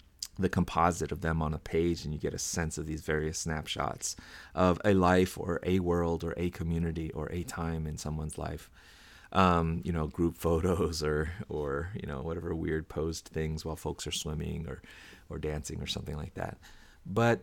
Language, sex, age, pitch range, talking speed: English, male, 30-49, 85-110 Hz, 195 wpm